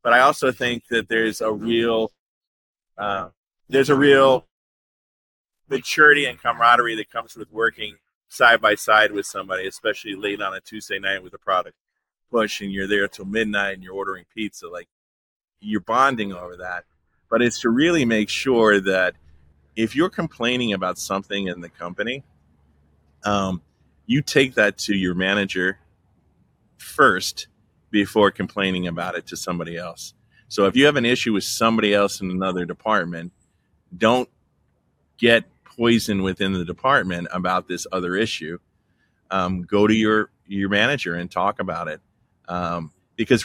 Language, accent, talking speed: English, American, 155 wpm